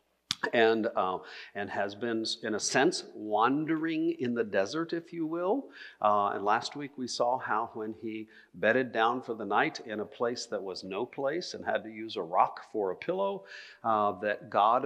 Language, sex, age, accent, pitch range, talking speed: English, male, 50-69, American, 105-145 Hz, 195 wpm